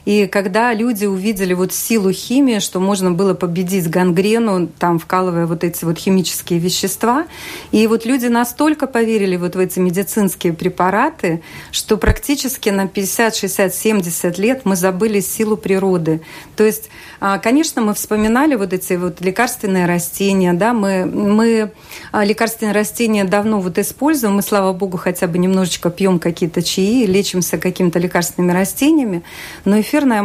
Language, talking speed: Russian, 140 wpm